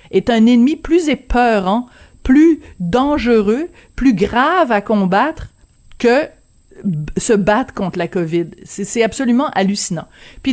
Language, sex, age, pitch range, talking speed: French, female, 40-59, 190-245 Hz, 125 wpm